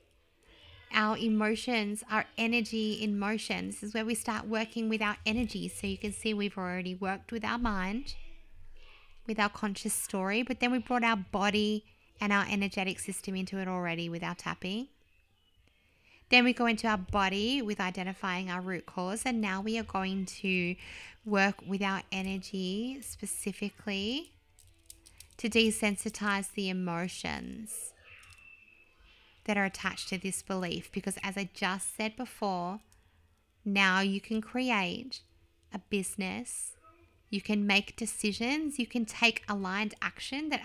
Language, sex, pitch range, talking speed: English, female, 185-225 Hz, 145 wpm